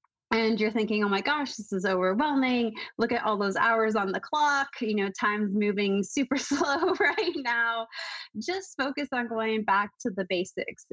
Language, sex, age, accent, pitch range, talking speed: English, female, 20-39, American, 195-245 Hz, 180 wpm